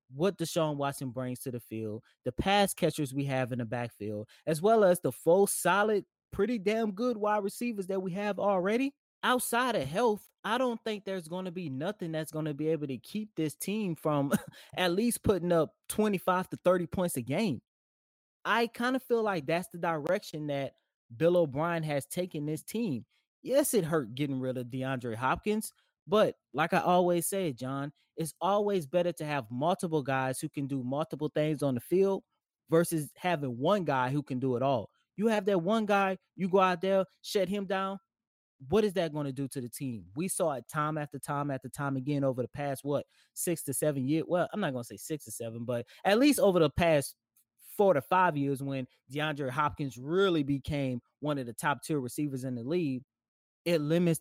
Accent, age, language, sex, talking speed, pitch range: American, 20-39, English, male, 205 wpm, 140-195 Hz